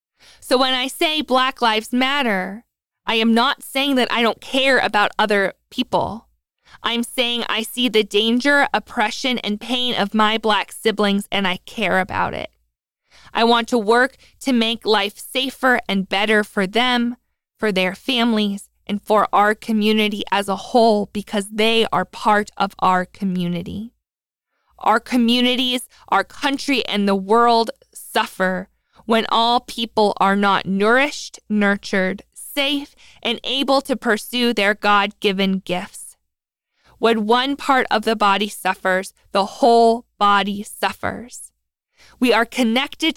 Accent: American